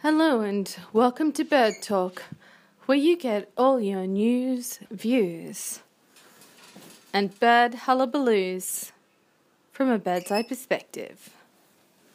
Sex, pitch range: female, 195-245 Hz